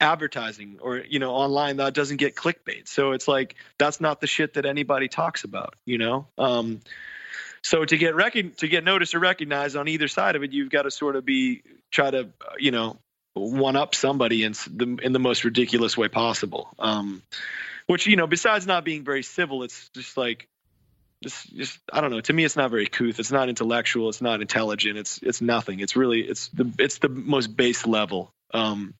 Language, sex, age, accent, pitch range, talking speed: English, male, 30-49, American, 115-150 Hz, 205 wpm